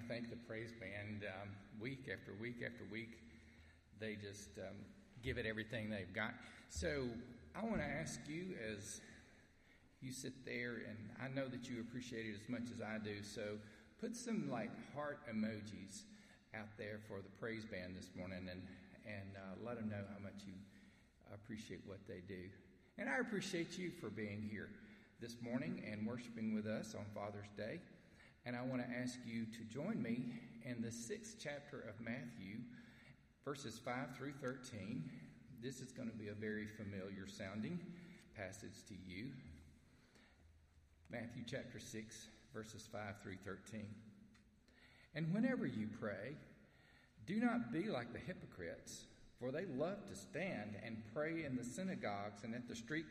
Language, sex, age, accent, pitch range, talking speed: English, male, 40-59, American, 105-125 Hz, 165 wpm